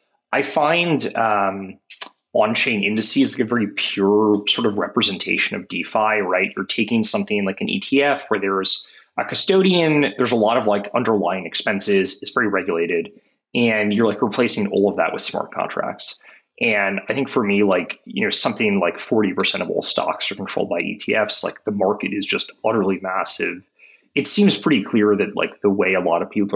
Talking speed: 185 wpm